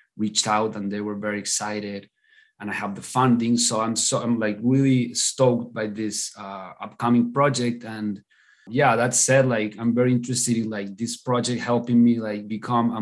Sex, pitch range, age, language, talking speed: male, 105-120 Hz, 30-49, English, 190 wpm